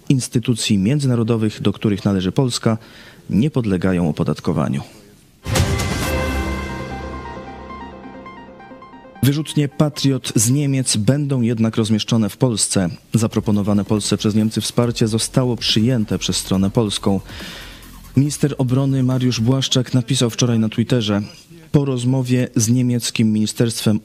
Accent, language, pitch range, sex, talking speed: native, Polish, 105-130 Hz, male, 100 wpm